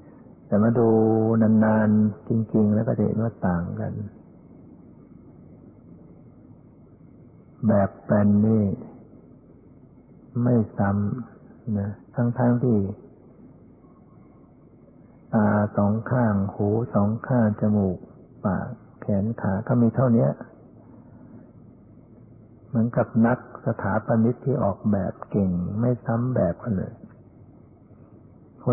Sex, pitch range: male, 105-120 Hz